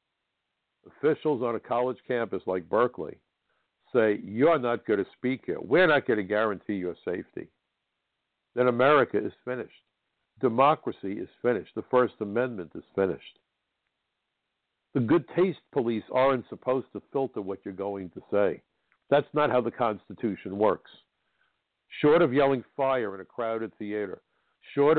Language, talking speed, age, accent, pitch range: English, 145 wpm, 60-79, American, 110-145 Hz